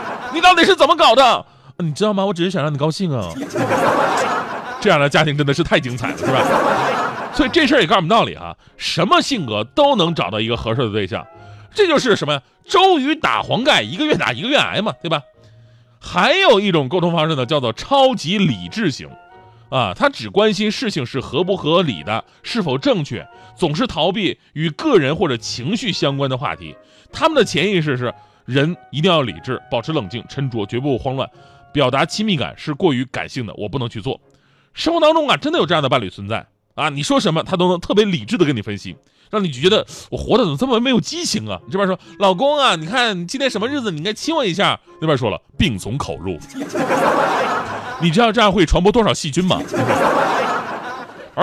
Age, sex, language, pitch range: 30-49, male, Chinese, 130-215 Hz